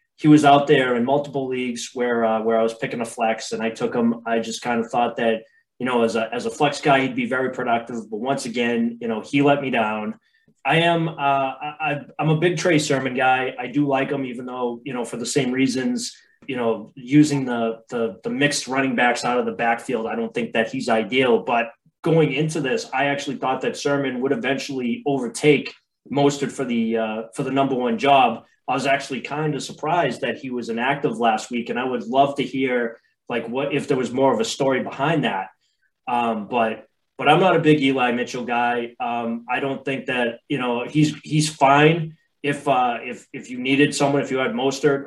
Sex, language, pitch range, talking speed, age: male, English, 120-145 Hz, 225 wpm, 20-39